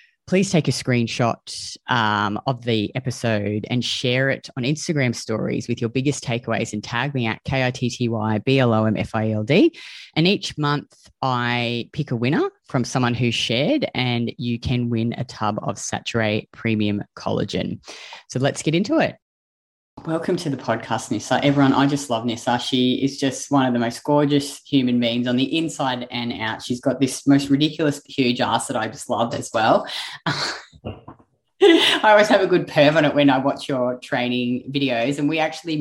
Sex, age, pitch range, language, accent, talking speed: female, 30-49, 120-145 Hz, English, Australian, 175 wpm